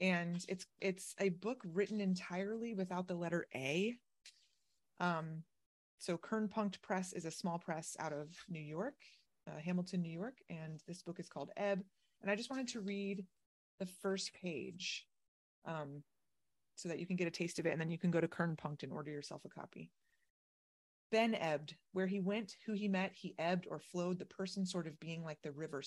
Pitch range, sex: 160-190 Hz, female